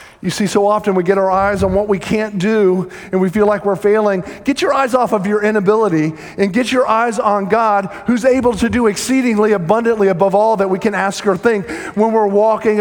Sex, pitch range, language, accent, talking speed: male, 185-225 Hz, English, American, 230 wpm